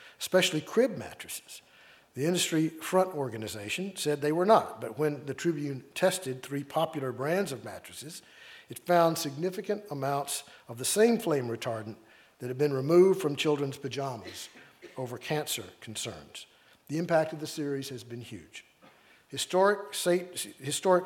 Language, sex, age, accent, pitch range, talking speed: English, male, 50-69, American, 130-170 Hz, 140 wpm